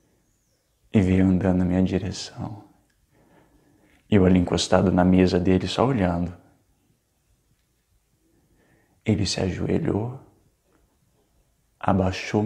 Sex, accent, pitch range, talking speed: male, Brazilian, 95-105 Hz, 90 wpm